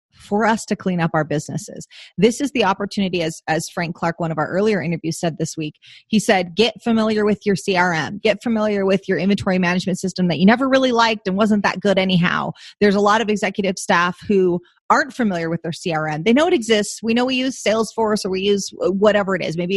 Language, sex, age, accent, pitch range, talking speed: English, female, 30-49, American, 175-220 Hz, 230 wpm